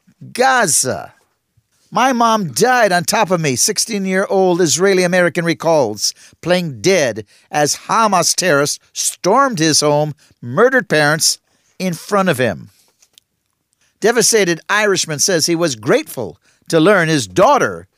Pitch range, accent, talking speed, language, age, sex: 145-195 Hz, American, 115 wpm, English, 50-69, male